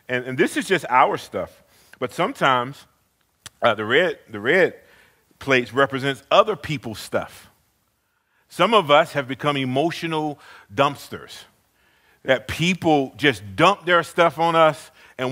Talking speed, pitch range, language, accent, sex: 135 wpm, 135-175 Hz, English, American, male